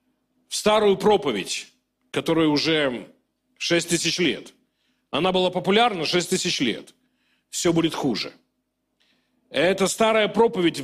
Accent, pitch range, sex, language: native, 170-220 Hz, male, Russian